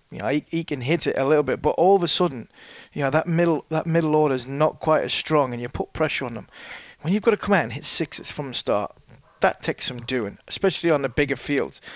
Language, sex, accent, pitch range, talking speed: English, male, British, 130-160 Hz, 275 wpm